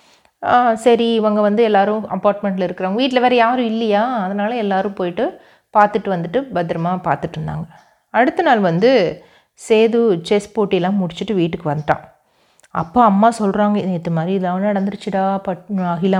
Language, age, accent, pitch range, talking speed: Tamil, 30-49, native, 180-235 Hz, 135 wpm